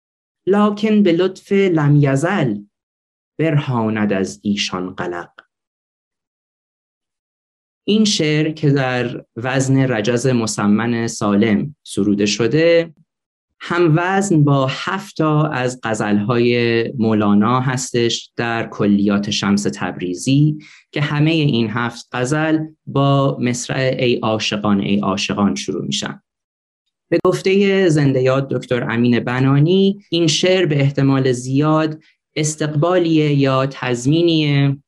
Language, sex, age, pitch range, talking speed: Persian, male, 30-49, 110-155 Hz, 100 wpm